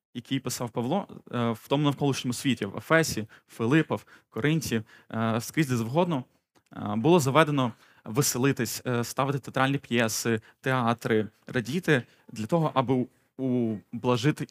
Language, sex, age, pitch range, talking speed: Ukrainian, male, 20-39, 115-140 Hz, 110 wpm